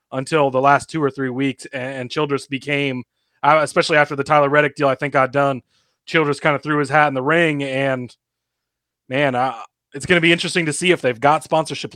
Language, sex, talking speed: English, male, 225 wpm